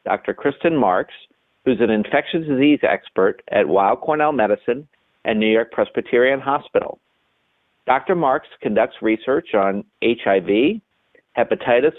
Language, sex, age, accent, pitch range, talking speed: English, male, 50-69, American, 110-140 Hz, 120 wpm